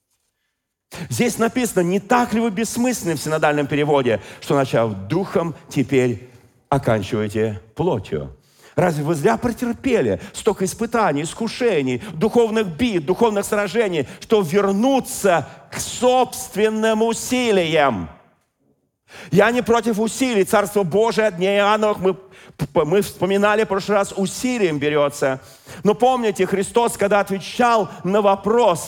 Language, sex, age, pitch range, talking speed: Russian, male, 40-59, 150-220 Hz, 115 wpm